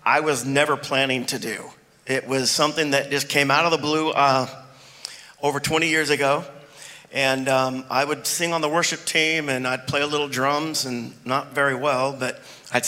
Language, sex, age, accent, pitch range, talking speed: English, male, 40-59, American, 130-150 Hz, 195 wpm